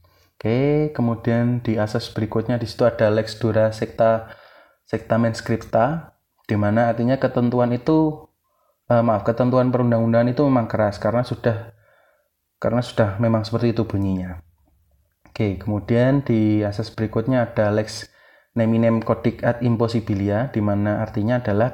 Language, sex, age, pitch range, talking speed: Indonesian, male, 20-39, 110-130 Hz, 120 wpm